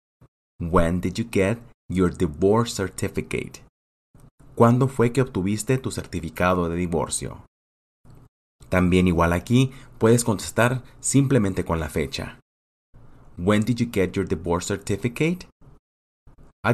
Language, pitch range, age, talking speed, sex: English, 90-115 Hz, 30-49, 115 wpm, male